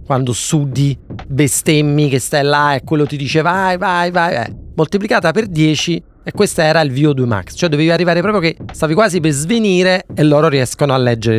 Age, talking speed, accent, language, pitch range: 30-49, 190 wpm, native, Italian, 130-170 Hz